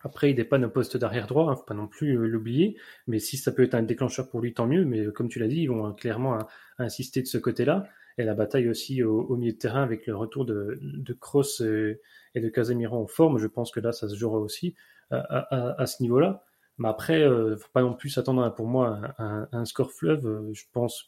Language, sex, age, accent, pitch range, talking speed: French, male, 20-39, French, 115-135 Hz, 260 wpm